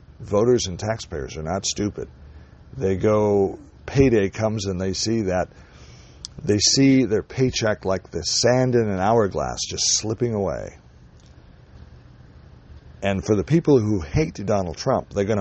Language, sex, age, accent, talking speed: English, male, 60-79, American, 145 wpm